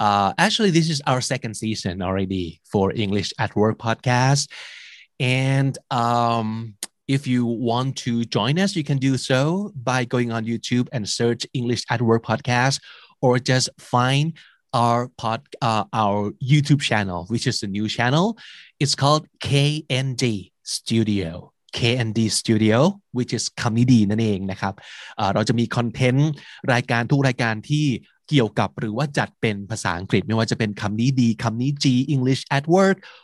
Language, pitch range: Thai, 110-135 Hz